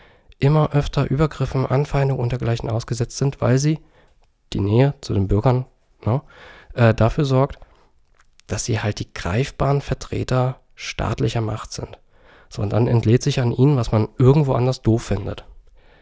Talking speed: 145 wpm